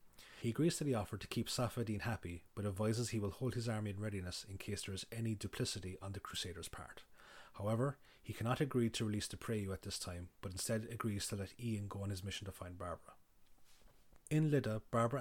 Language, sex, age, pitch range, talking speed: English, male, 30-49, 95-115 Hz, 215 wpm